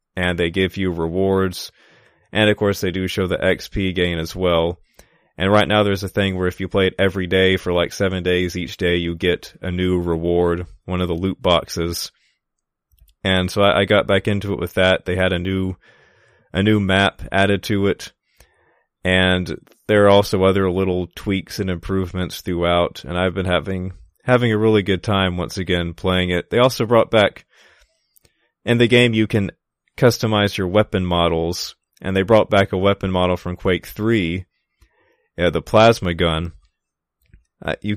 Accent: American